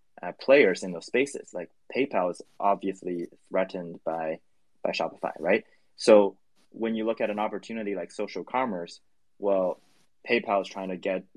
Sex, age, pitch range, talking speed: male, 20-39, 90-100 Hz, 160 wpm